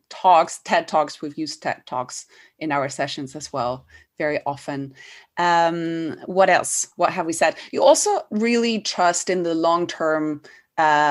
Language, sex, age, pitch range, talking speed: English, female, 20-39, 155-190 Hz, 150 wpm